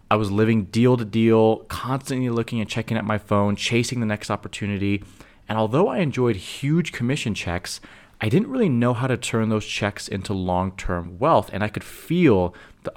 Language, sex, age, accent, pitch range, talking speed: English, male, 30-49, American, 100-130 Hz, 190 wpm